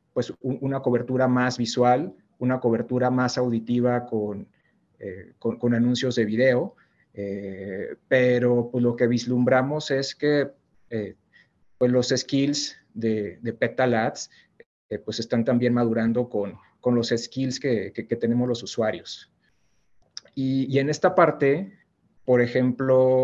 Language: English